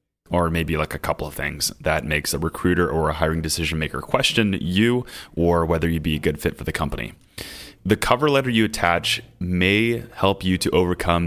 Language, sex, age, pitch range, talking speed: English, male, 30-49, 80-100 Hz, 200 wpm